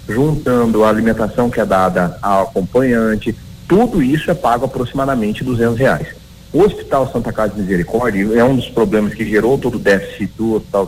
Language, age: Portuguese, 40-59